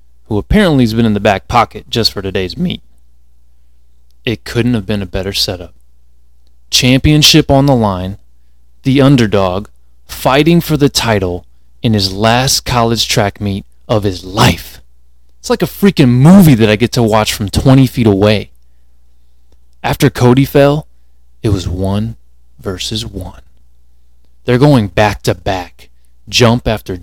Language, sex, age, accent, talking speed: English, male, 20-39, American, 150 wpm